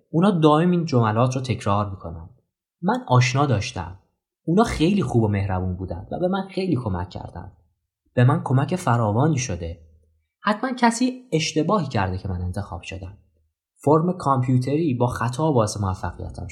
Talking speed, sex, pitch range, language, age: 150 wpm, male, 105-155 Hz, Persian, 20-39